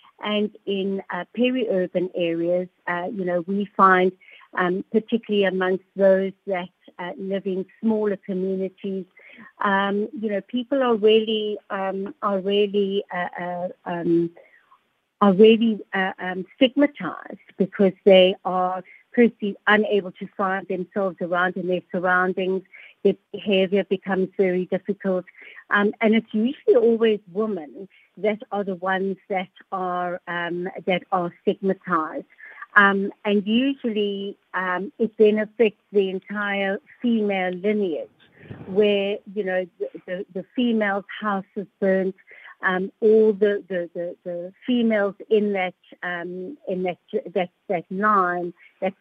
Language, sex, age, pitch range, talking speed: English, female, 50-69, 185-210 Hz, 130 wpm